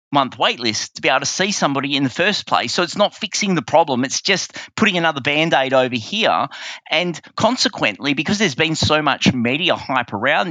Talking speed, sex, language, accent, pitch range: 205 wpm, male, English, Australian, 130-170 Hz